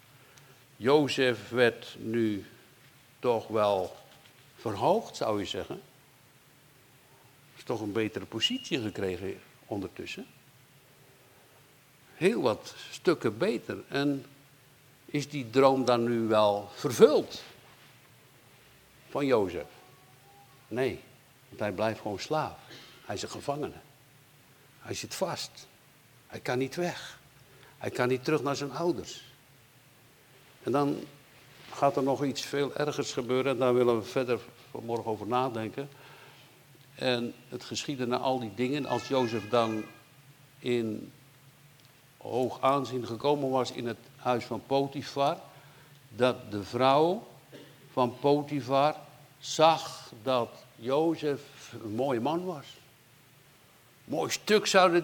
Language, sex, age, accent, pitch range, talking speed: Dutch, male, 60-79, Dutch, 125-145 Hz, 120 wpm